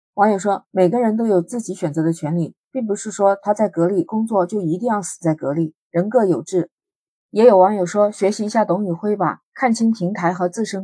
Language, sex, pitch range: Chinese, female, 175-220 Hz